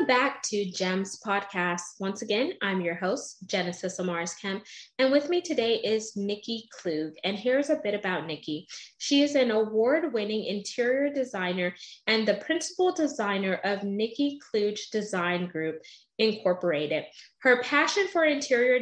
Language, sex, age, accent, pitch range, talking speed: English, female, 20-39, American, 185-250 Hz, 145 wpm